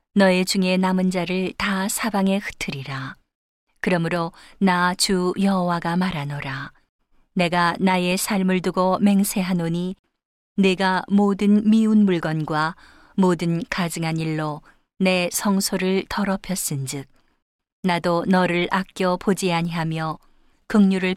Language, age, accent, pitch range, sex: Korean, 40-59, native, 170-195 Hz, female